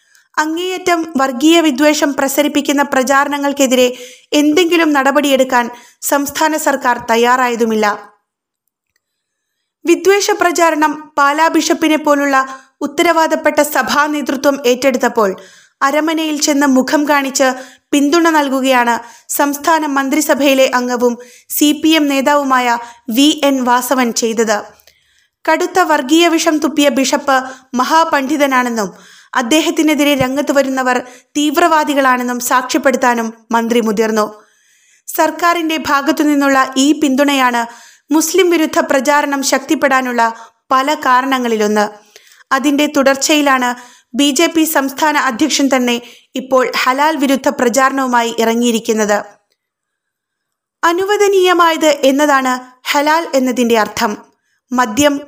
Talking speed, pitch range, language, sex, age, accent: 80 wpm, 250-310 Hz, Malayalam, female, 20-39, native